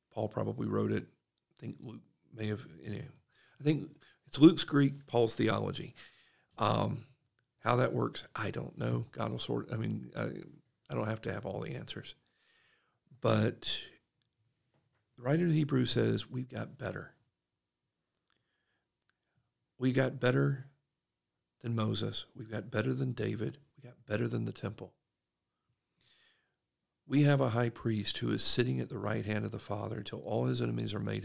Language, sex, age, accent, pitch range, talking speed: English, male, 50-69, American, 105-130 Hz, 165 wpm